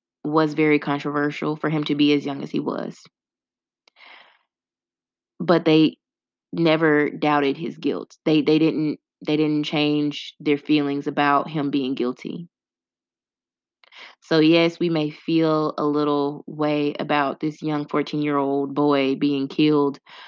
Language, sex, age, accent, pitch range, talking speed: English, female, 20-39, American, 145-155 Hz, 135 wpm